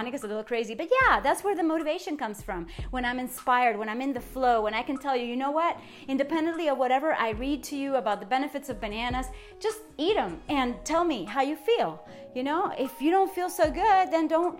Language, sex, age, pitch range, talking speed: English, female, 30-49, 240-315 Hz, 245 wpm